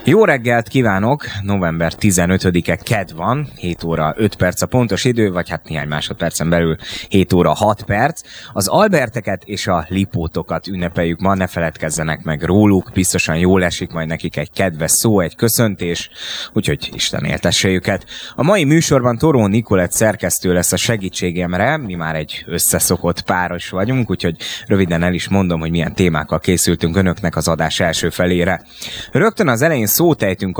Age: 20-39